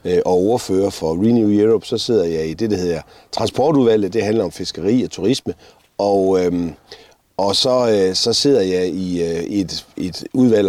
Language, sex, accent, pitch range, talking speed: Danish, male, native, 95-125 Hz, 180 wpm